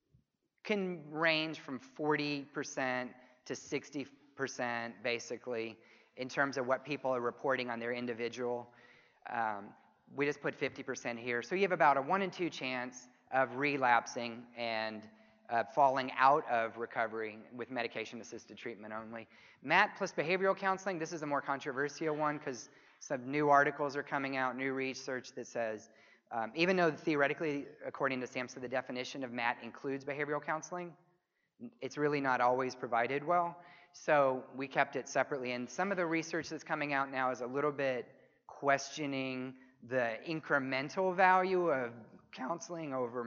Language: English